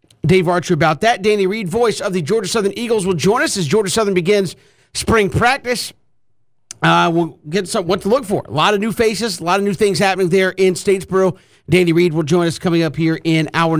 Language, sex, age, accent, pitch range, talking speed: English, male, 50-69, American, 165-205 Hz, 230 wpm